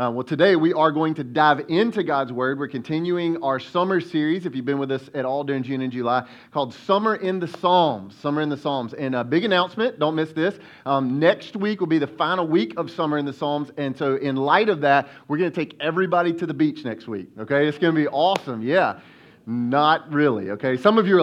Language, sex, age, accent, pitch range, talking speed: English, male, 30-49, American, 135-175 Hz, 245 wpm